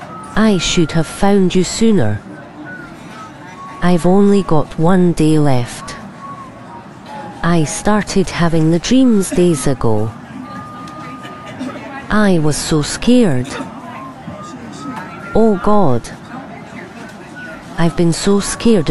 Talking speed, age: 90 wpm, 30-49